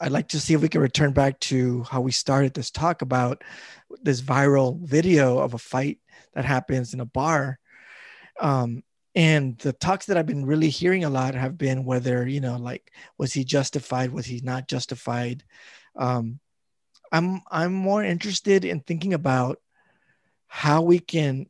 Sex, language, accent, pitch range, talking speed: male, English, American, 130-165 Hz, 175 wpm